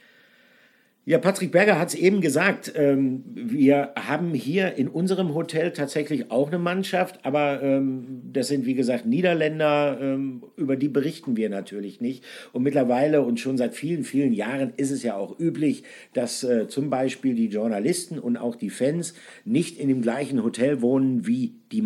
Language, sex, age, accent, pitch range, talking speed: German, male, 50-69, German, 130-170 Hz, 160 wpm